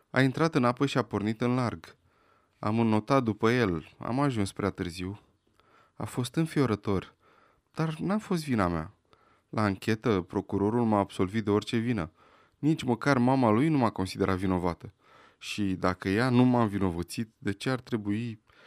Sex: male